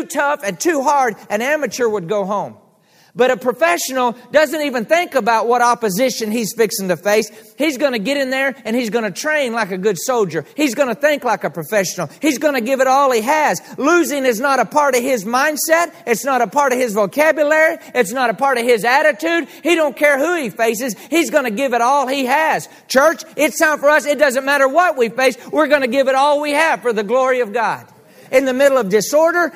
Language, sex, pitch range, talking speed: English, male, 195-280 Hz, 240 wpm